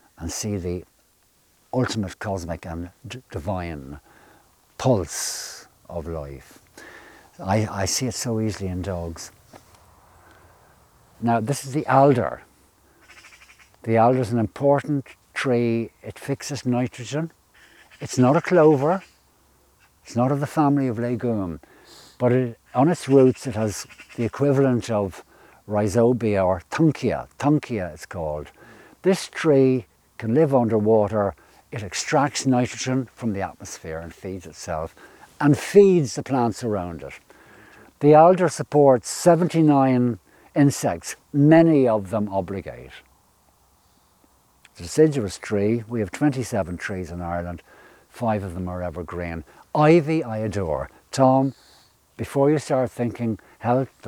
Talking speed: 125 wpm